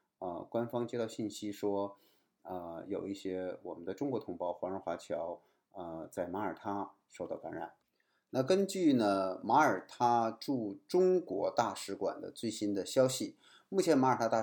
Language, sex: Chinese, male